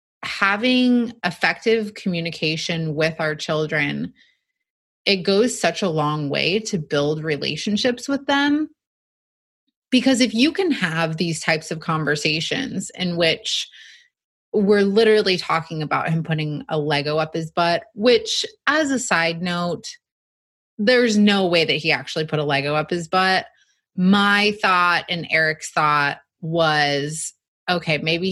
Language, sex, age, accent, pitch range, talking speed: English, female, 30-49, American, 155-220 Hz, 135 wpm